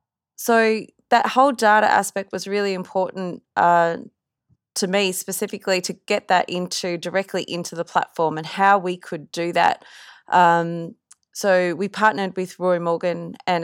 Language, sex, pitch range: English, female, 175-205 Hz